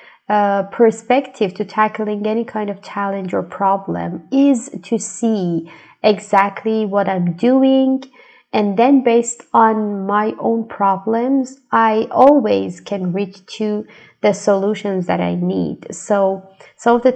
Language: English